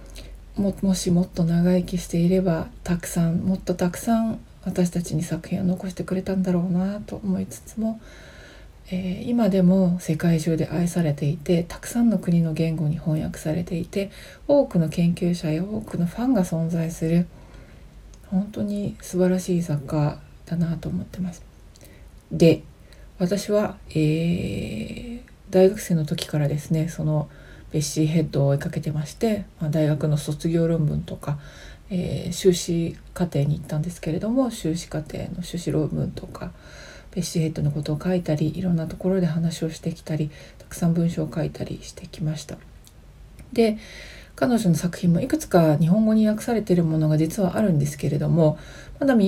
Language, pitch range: Japanese, 160-185 Hz